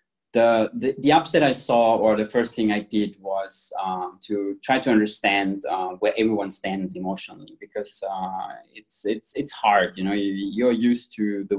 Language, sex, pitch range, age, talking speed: English, male, 95-110 Hz, 20-39, 185 wpm